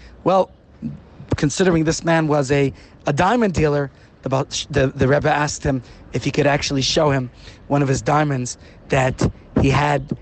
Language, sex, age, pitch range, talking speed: English, male, 30-49, 135-180 Hz, 165 wpm